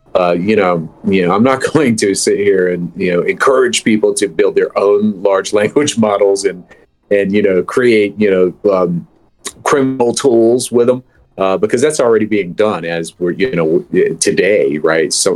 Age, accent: 40-59, American